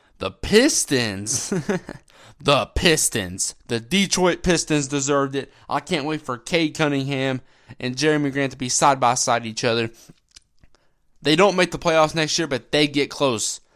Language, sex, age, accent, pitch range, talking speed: English, male, 20-39, American, 120-155 Hz, 150 wpm